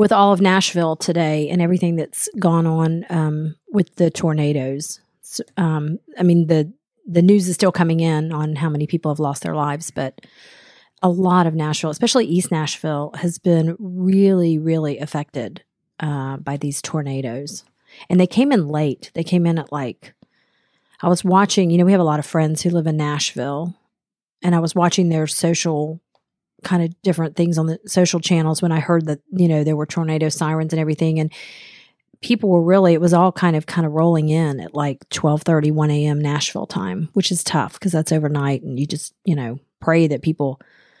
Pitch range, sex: 150-175 Hz, female